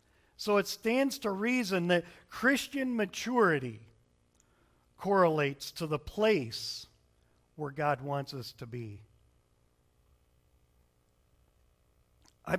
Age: 50-69